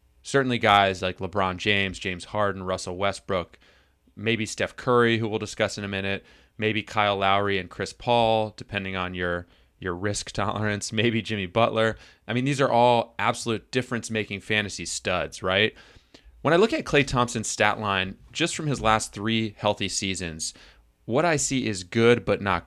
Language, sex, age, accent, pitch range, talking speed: English, male, 30-49, American, 95-120 Hz, 170 wpm